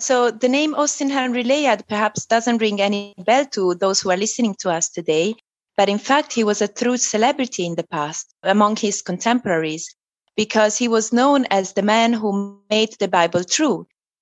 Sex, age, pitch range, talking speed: female, 30-49, 185-240 Hz, 190 wpm